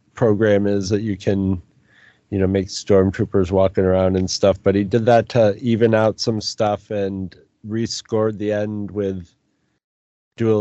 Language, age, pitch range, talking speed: English, 30-49, 105-135 Hz, 160 wpm